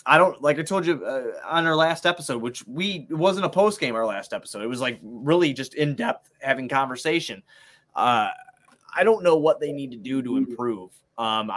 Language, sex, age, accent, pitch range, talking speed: English, male, 20-39, American, 115-160 Hz, 205 wpm